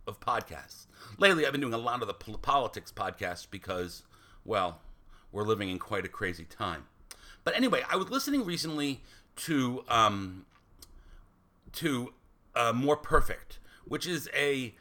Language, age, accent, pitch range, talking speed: English, 40-59, American, 100-160 Hz, 145 wpm